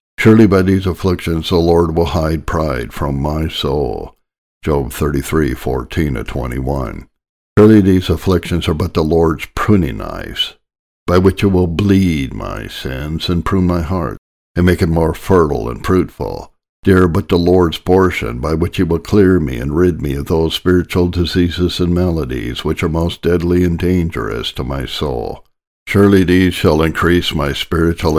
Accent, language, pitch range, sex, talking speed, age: American, English, 80-90 Hz, male, 170 wpm, 60-79